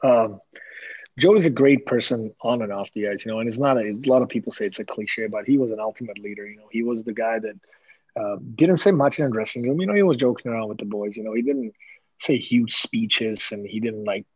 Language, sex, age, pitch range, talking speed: English, male, 30-49, 110-130 Hz, 270 wpm